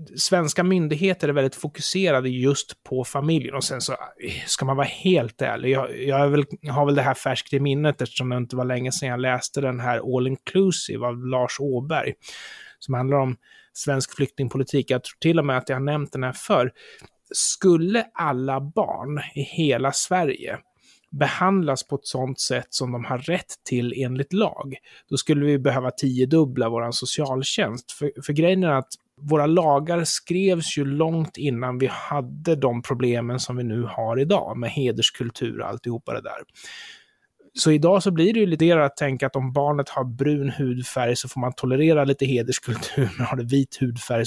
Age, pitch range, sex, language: 30-49, 125-155 Hz, male, Swedish